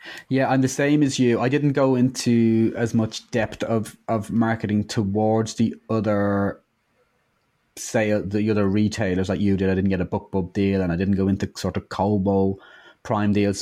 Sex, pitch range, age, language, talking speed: male, 95-110 Hz, 20-39, English, 185 wpm